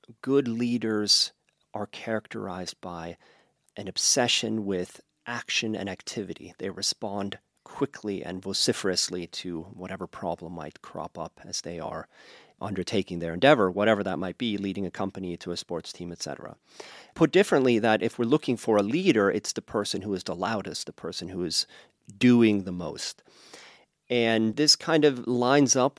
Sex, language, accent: male, English, American